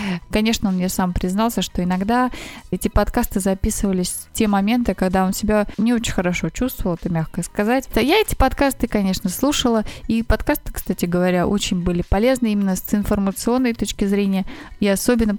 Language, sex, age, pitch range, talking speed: Russian, female, 20-39, 185-240 Hz, 165 wpm